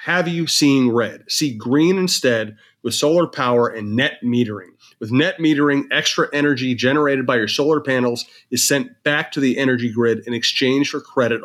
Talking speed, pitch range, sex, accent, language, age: 180 wpm, 120-150 Hz, male, American, English, 30-49